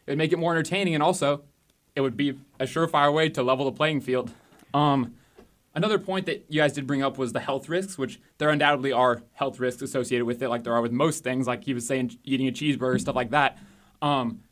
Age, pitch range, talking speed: 20-39, 130-155 Hz, 240 wpm